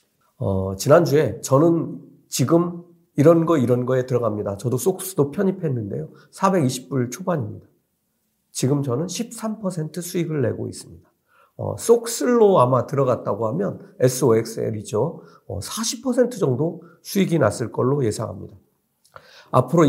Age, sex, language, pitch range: 50-69, male, Korean, 125-170 Hz